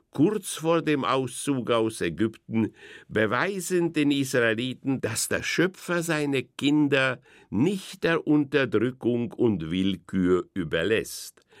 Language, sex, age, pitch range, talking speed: German, male, 60-79, 110-160 Hz, 105 wpm